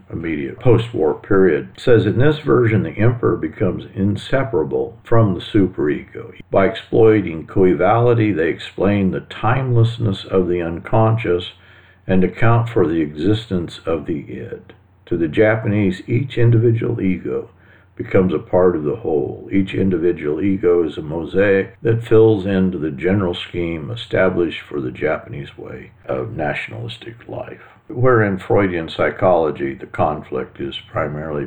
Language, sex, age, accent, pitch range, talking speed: English, male, 50-69, American, 90-115 Hz, 135 wpm